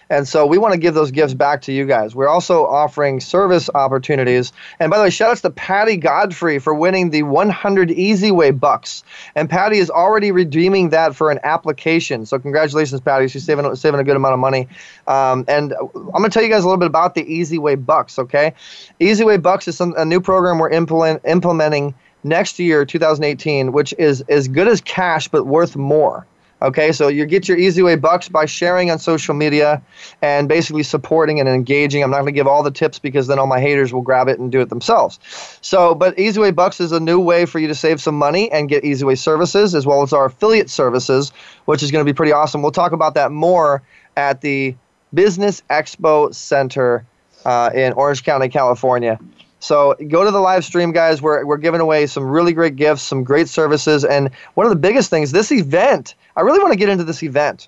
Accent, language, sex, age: American, English, male, 20-39